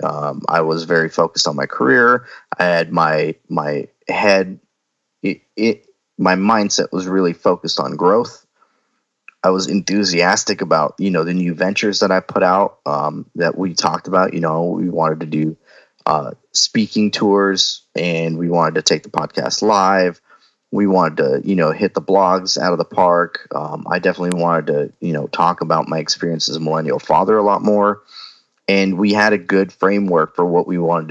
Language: English